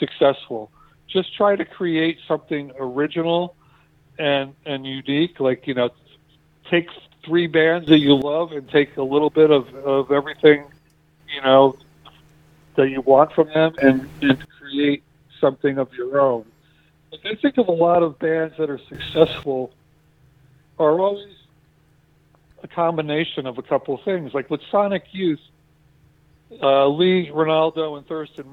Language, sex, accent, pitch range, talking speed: English, male, American, 135-160 Hz, 145 wpm